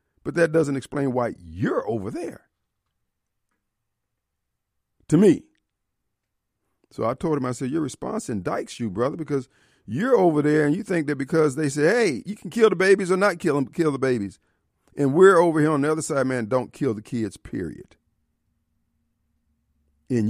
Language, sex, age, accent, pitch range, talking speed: English, male, 50-69, American, 100-155 Hz, 175 wpm